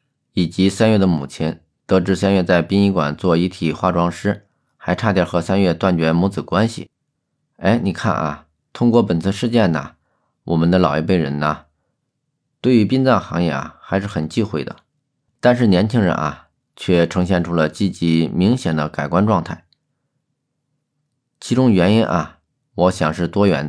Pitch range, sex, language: 85-110 Hz, male, Chinese